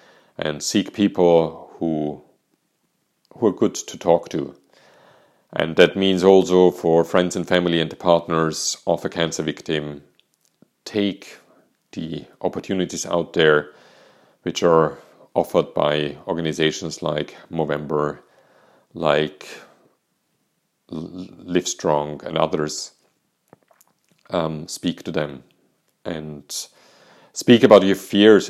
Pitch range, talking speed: 80-95 Hz, 105 wpm